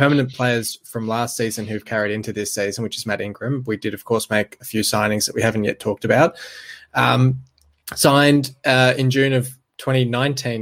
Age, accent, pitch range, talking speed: 20-39, Australian, 105-120 Hz, 200 wpm